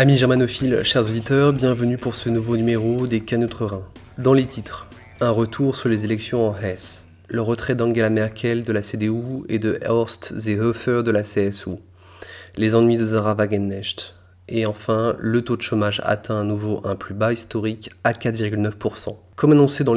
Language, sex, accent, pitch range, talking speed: French, male, French, 105-120 Hz, 175 wpm